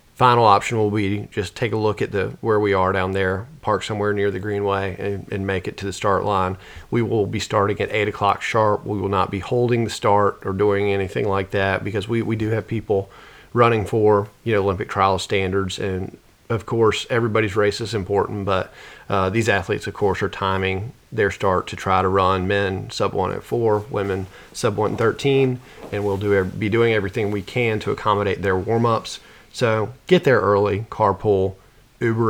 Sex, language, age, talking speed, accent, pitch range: male, English, 40-59, 205 wpm, American, 95-110 Hz